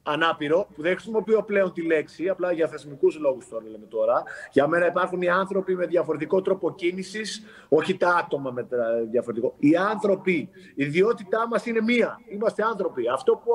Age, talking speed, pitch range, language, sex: 30-49, 175 wpm, 165-240 Hz, Greek, male